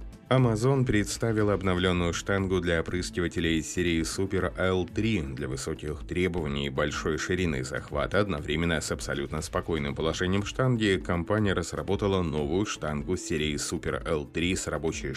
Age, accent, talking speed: 30-49, native, 125 wpm